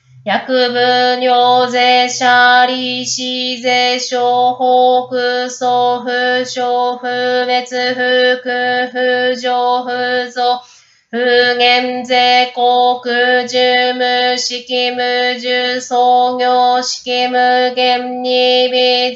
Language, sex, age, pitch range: Japanese, female, 20-39, 245-250 Hz